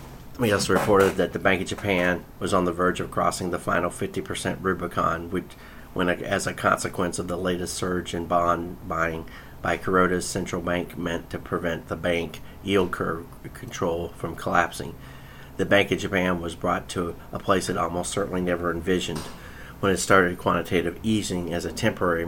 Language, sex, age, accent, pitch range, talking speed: English, male, 40-59, American, 85-95 Hz, 175 wpm